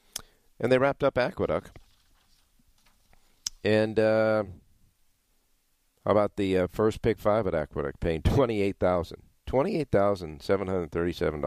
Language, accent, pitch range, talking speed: English, American, 80-100 Hz, 100 wpm